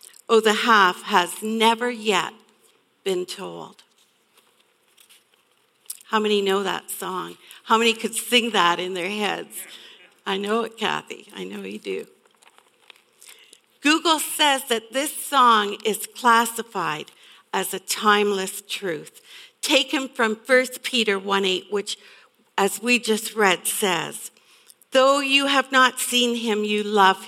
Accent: American